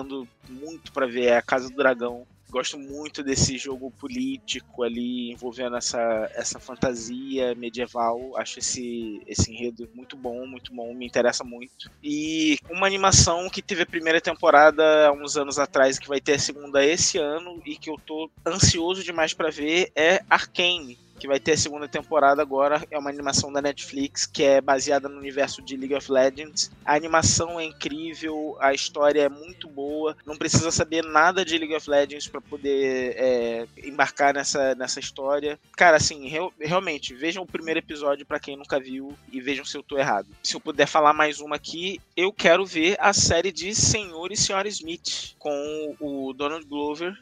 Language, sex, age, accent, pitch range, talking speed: Portuguese, male, 20-39, Brazilian, 135-160 Hz, 180 wpm